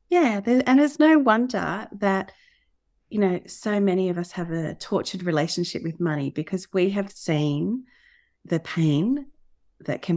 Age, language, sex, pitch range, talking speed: 30-49, English, female, 150-190 Hz, 155 wpm